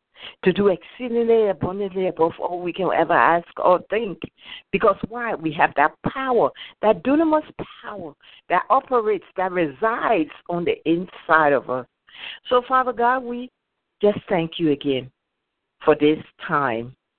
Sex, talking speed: female, 145 wpm